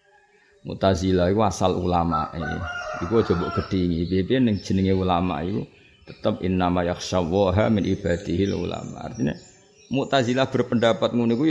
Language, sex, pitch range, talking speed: Malay, male, 105-140 Hz, 125 wpm